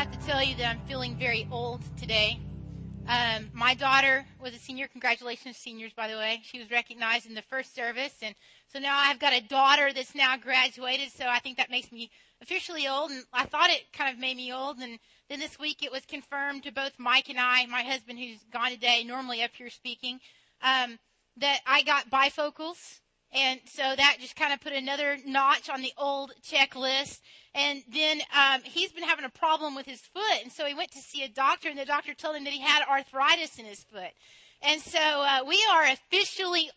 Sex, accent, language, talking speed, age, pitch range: female, American, English, 215 wpm, 30-49, 245-305 Hz